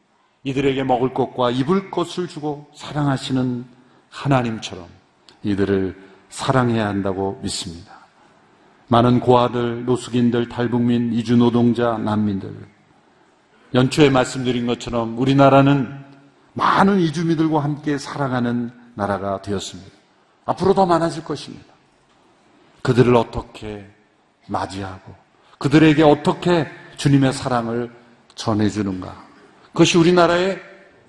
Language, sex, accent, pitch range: Korean, male, native, 120-150 Hz